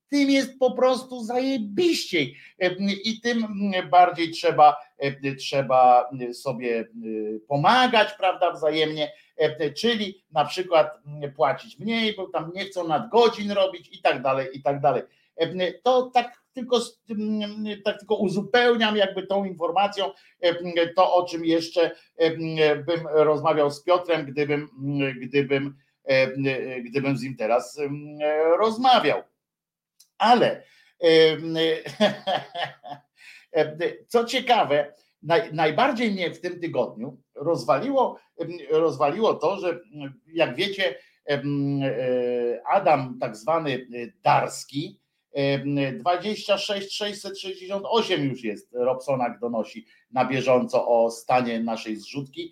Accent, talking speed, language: native, 95 wpm, Polish